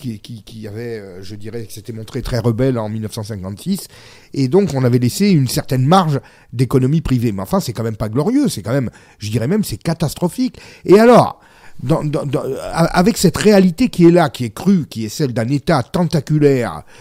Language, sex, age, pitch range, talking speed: French, male, 40-59, 115-170 Hz, 200 wpm